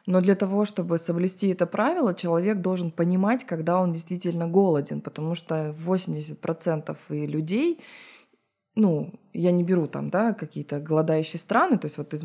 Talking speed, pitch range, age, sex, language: 150 wpm, 165-210 Hz, 20-39, female, Russian